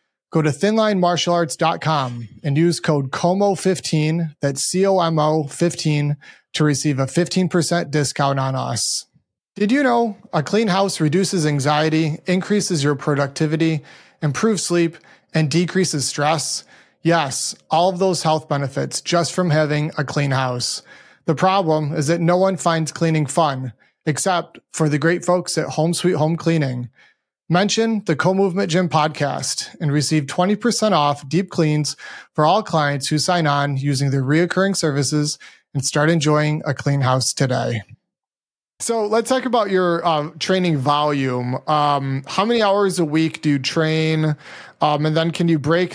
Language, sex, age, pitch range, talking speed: English, male, 30-49, 145-175 Hz, 150 wpm